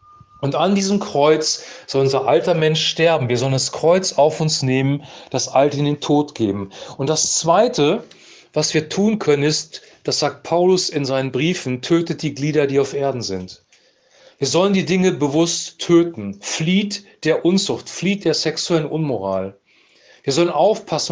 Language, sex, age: German, male, 40-59